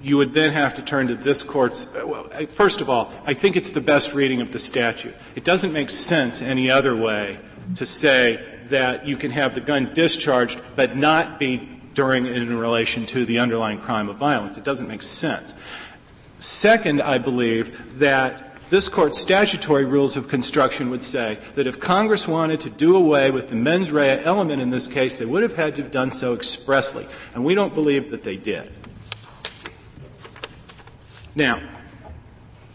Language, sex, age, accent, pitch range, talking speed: English, male, 40-59, American, 125-155 Hz, 180 wpm